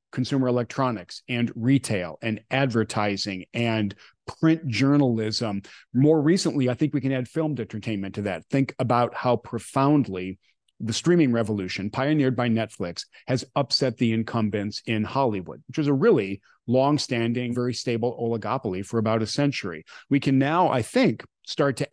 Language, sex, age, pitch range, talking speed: English, male, 40-59, 110-140 Hz, 150 wpm